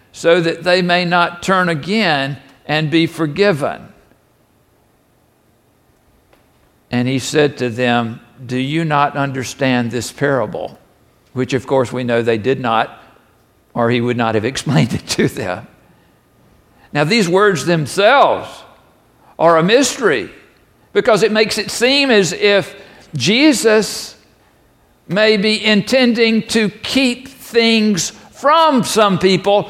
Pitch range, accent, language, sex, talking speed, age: 135-230 Hz, American, English, male, 125 wpm, 60-79